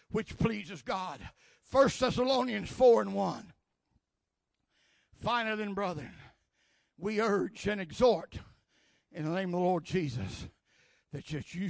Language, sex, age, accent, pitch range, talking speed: English, male, 60-79, American, 135-175 Hz, 125 wpm